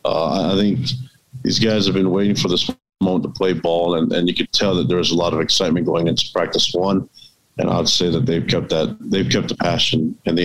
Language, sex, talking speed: English, male, 245 wpm